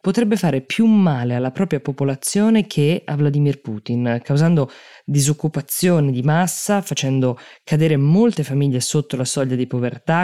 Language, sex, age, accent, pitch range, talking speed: Italian, female, 20-39, native, 130-160 Hz, 140 wpm